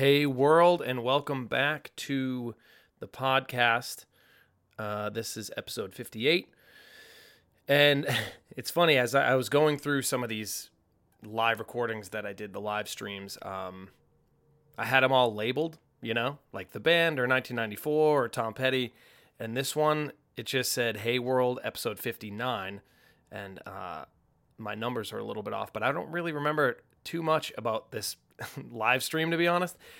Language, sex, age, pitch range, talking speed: English, male, 30-49, 110-145 Hz, 165 wpm